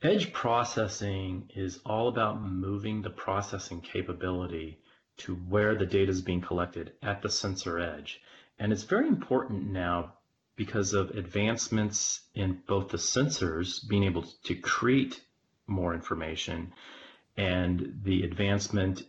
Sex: male